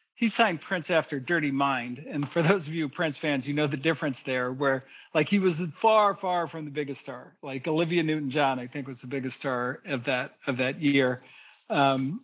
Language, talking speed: English, 215 wpm